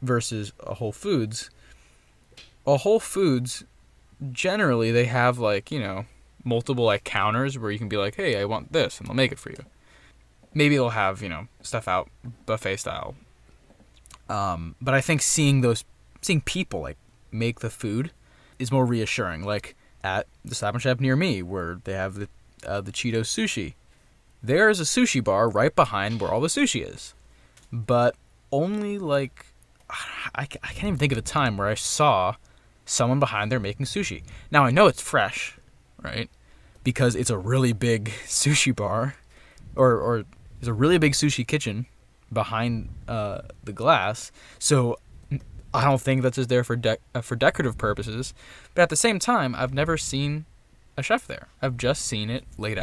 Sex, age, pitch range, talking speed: male, 20-39, 110-135 Hz, 175 wpm